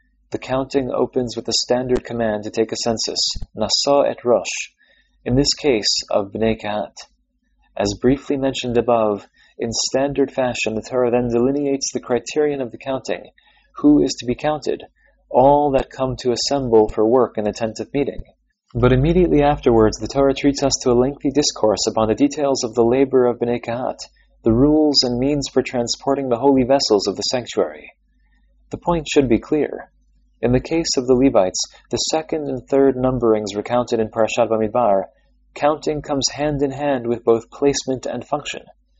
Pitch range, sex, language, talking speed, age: 115-140 Hz, male, English, 175 wpm, 30-49